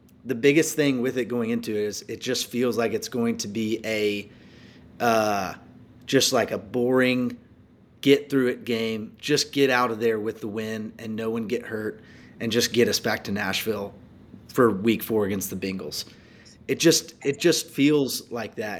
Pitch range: 115-135 Hz